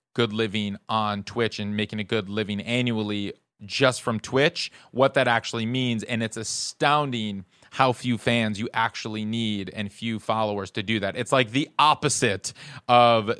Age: 30-49